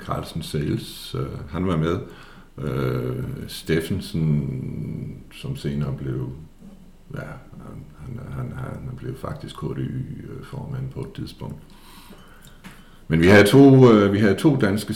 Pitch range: 75-100 Hz